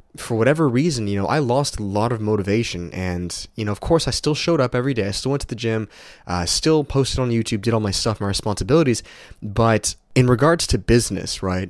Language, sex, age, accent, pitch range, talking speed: English, male, 20-39, American, 100-125 Hz, 230 wpm